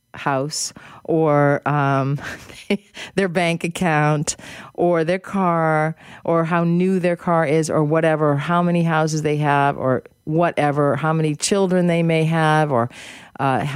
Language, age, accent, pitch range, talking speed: English, 40-59, American, 140-185 Hz, 140 wpm